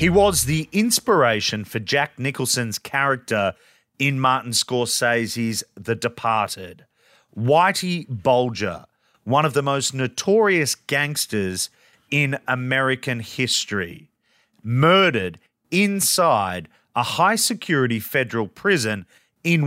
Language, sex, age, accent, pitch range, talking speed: English, male, 30-49, Australian, 120-165 Hz, 95 wpm